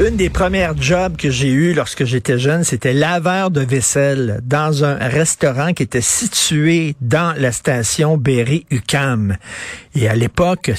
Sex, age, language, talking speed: male, 50-69, French, 155 wpm